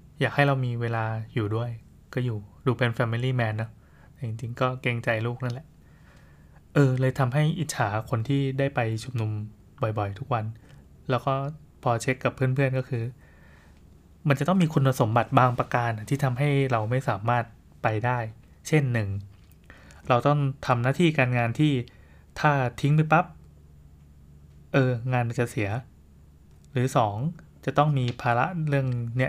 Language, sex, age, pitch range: Thai, male, 20-39, 110-135 Hz